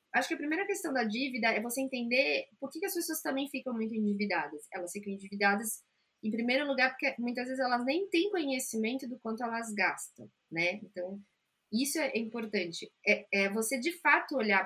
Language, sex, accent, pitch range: Portuguese, female, Brazilian, 205-270 Hz